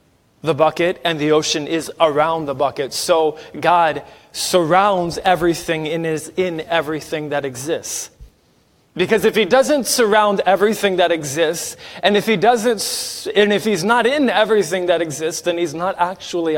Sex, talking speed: male, 155 wpm